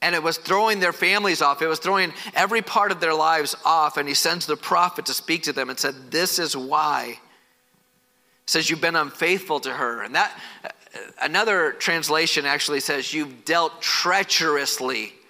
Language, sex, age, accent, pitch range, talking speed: English, male, 40-59, American, 150-190 Hz, 175 wpm